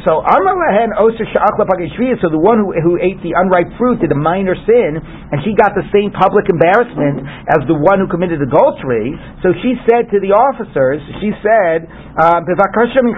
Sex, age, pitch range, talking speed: male, 50-69, 175-245 Hz, 165 wpm